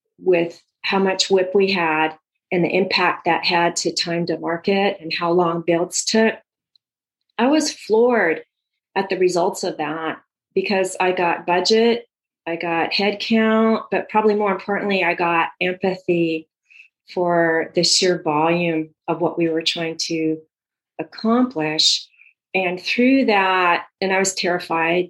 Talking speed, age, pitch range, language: 145 wpm, 40-59, 165-200 Hz, English